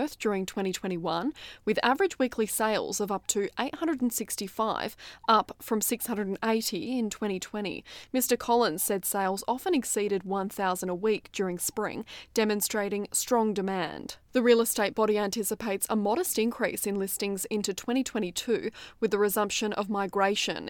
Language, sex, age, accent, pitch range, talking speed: English, female, 20-39, Australian, 195-225 Hz, 135 wpm